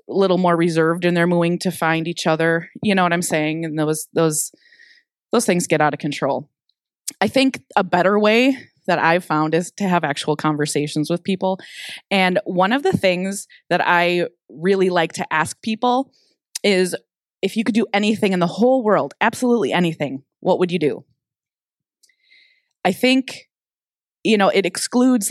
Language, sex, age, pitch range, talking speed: English, female, 20-39, 165-230 Hz, 175 wpm